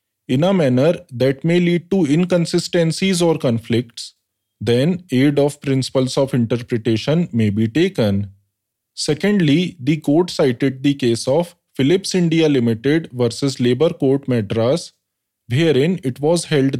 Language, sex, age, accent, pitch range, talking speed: English, male, 20-39, Indian, 120-170 Hz, 130 wpm